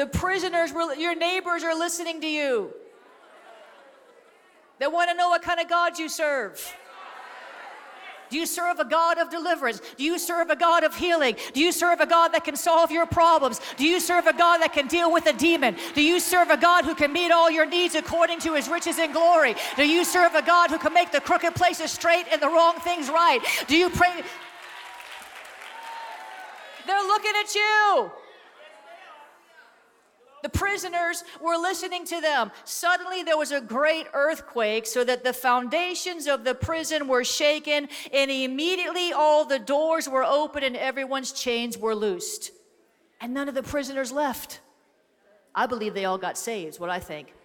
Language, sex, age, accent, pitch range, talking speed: English, female, 50-69, American, 270-345 Hz, 180 wpm